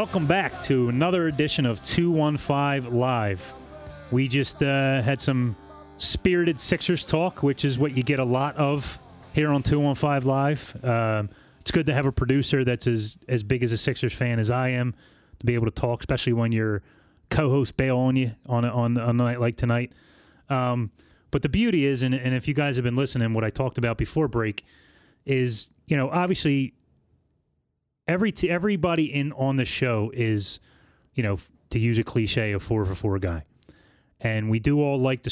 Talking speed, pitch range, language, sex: 195 wpm, 110-135 Hz, English, male